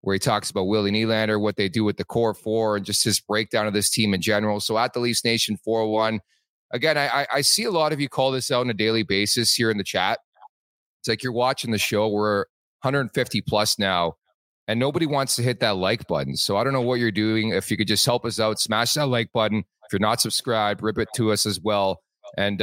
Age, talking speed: 30-49, 250 wpm